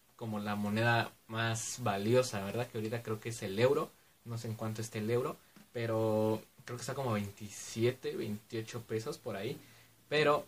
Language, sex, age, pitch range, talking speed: Spanish, male, 20-39, 110-130 Hz, 180 wpm